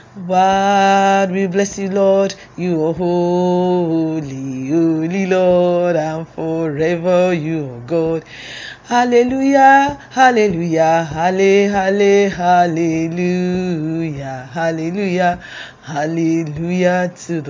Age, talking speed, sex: 30-49, 60 wpm, female